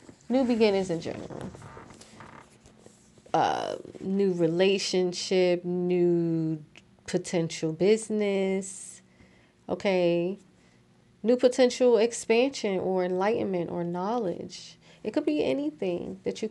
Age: 30-49